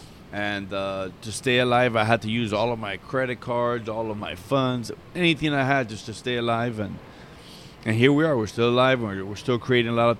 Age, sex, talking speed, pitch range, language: 20-39, male, 235 wpm, 100-120 Hz, English